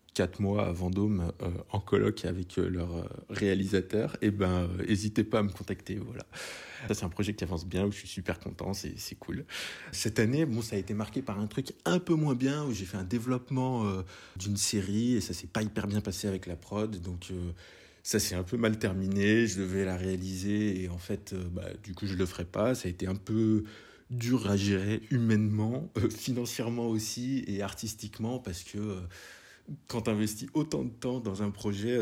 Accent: French